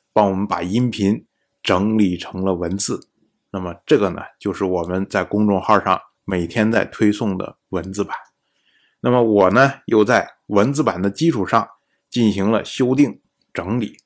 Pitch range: 95-120 Hz